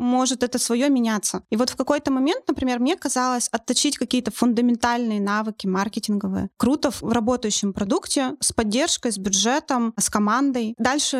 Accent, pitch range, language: native, 225-270 Hz, Russian